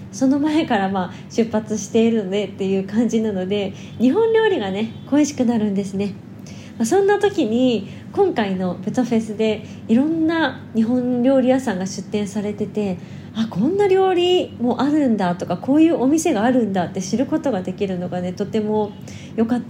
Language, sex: Japanese, female